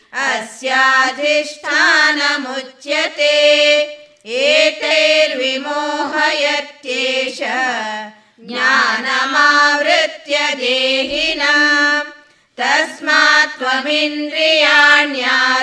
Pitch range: 260-295 Hz